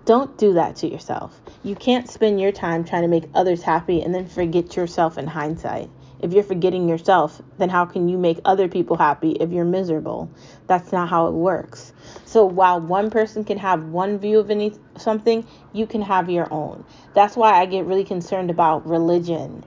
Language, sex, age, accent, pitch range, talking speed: English, female, 20-39, American, 170-195 Hz, 195 wpm